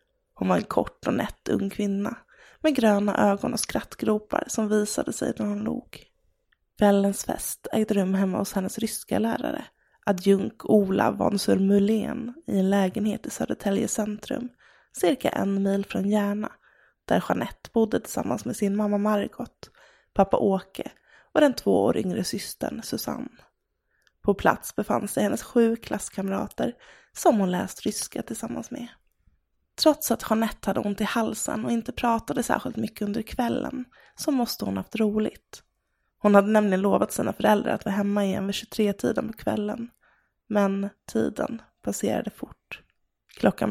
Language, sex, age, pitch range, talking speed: English, female, 20-39, 200-235 Hz, 150 wpm